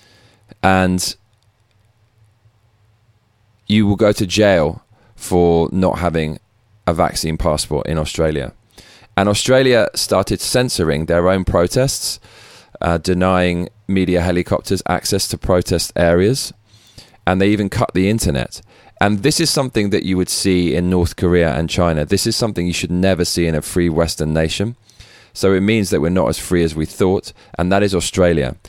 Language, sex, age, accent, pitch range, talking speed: English, male, 20-39, British, 85-110 Hz, 155 wpm